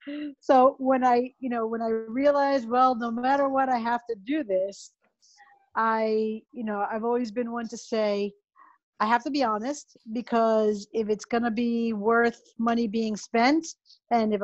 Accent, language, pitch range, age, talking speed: American, English, 210-255 Hz, 40-59, 180 wpm